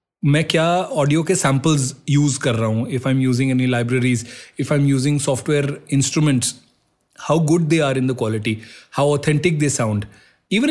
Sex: male